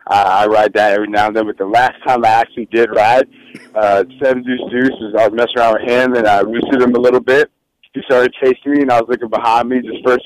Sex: male